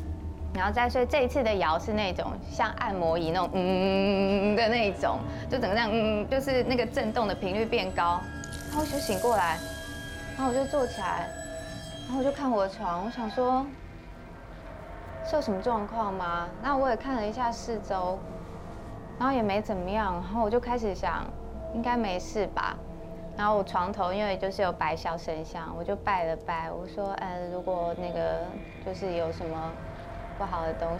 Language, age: Chinese, 20-39